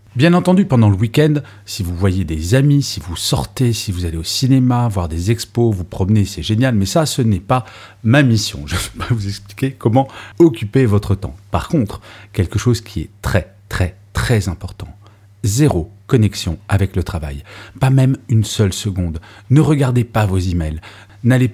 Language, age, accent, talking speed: French, 40-59, French, 190 wpm